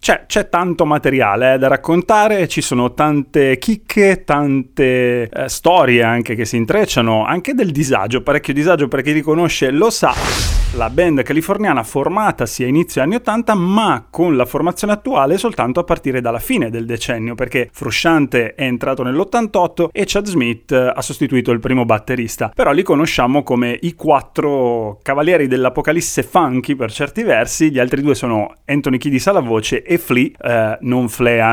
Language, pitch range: Italian, 125-165 Hz